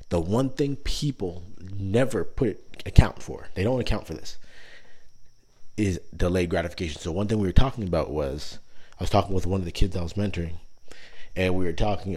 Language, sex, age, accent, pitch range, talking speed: English, male, 30-49, American, 85-110 Hz, 190 wpm